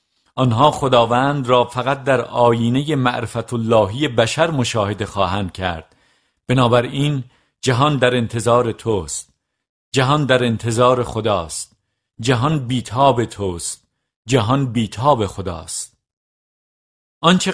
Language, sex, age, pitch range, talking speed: Persian, male, 50-69, 110-135 Hz, 90 wpm